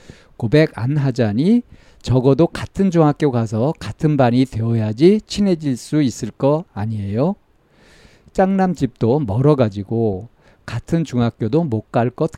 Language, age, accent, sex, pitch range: Korean, 50-69, native, male, 110-155 Hz